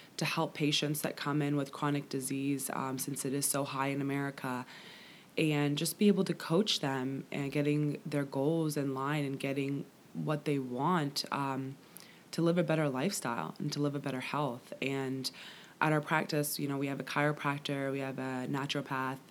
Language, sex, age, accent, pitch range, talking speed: English, female, 20-39, American, 140-150 Hz, 190 wpm